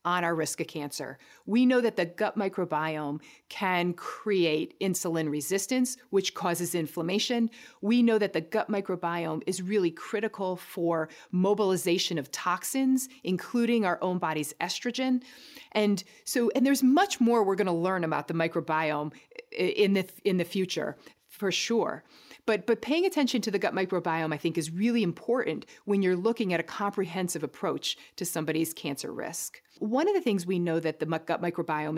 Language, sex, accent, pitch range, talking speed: English, female, American, 170-225 Hz, 165 wpm